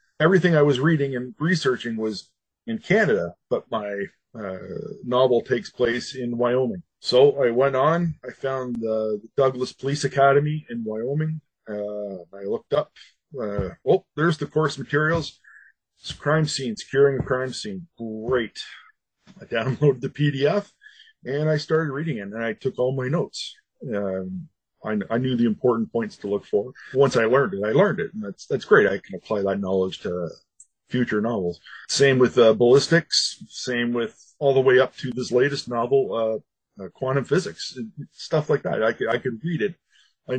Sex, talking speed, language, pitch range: male, 180 wpm, English, 115-150 Hz